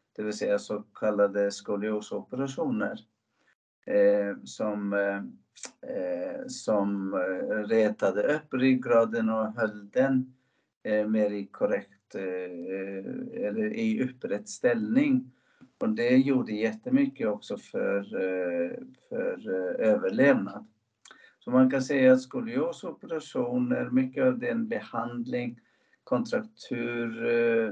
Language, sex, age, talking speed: Swedish, male, 60-79, 95 wpm